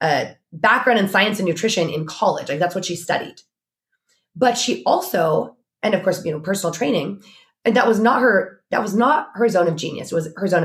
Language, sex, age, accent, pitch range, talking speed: English, female, 20-39, American, 165-230 Hz, 220 wpm